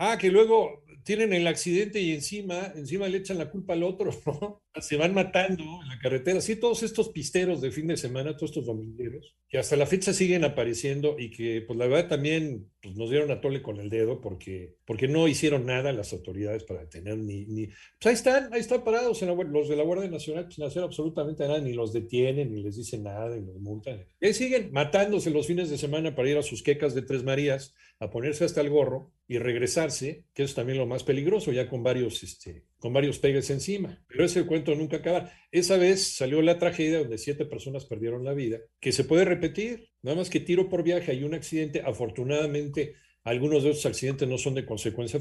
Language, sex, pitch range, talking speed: Spanish, male, 125-175 Hz, 220 wpm